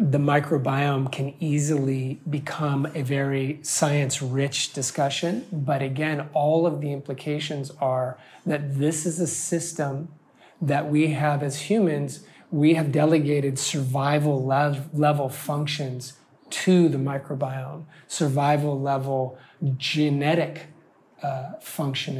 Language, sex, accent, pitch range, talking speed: English, male, American, 135-155 Hz, 105 wpm